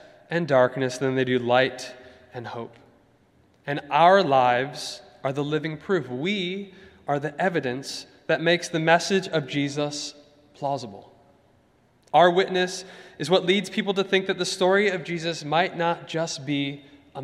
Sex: male